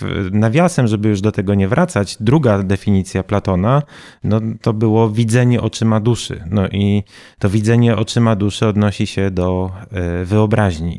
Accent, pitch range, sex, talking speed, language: native, 95-125 Hz, male, 135 wpm, Polish